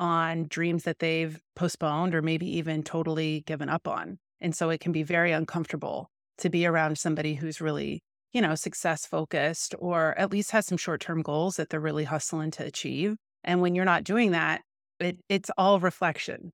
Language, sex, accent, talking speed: English, female, American, 185 wpm